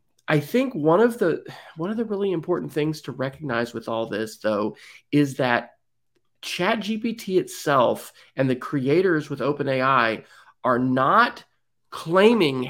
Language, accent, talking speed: English, American, 135 wpm